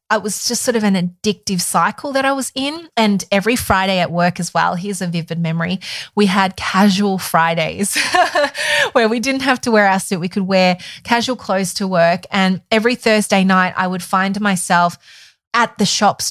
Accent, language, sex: Australian, English, female